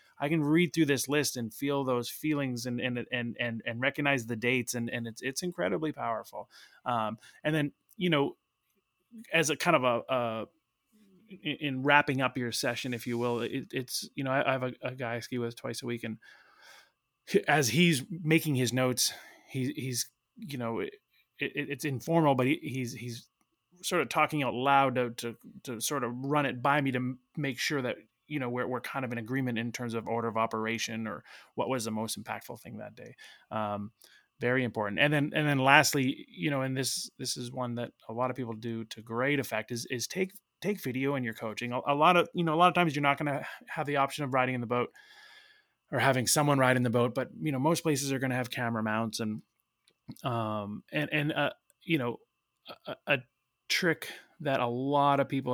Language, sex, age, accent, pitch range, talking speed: English, male, 20-39, American, 120-150 Hz, 220 wpm